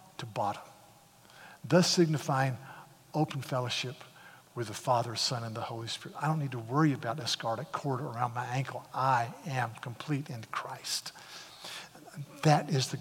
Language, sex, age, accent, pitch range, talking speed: English, male, 50-69, American, 125-155 Hz, 155 wpm